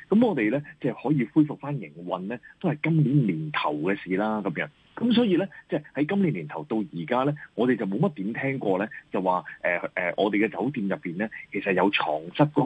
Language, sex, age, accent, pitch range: Chinese, male, 30-49, native, 105-170 Hz